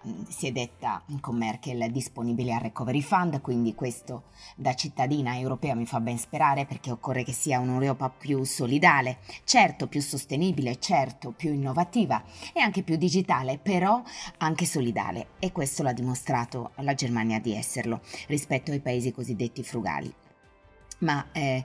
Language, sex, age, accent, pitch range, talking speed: Italian, female, 20-39, native, 125-155 Hz, 145 wpm